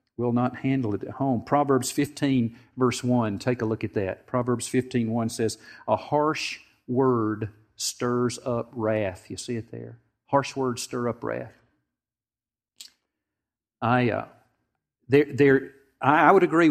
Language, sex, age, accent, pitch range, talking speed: English, male, 50-69, American, 110-135 Hz, 150 wpm